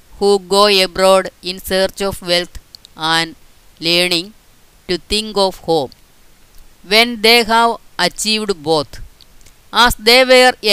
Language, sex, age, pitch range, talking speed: Malayalam, female, 20-39, 175-215 Hz, 115 wpm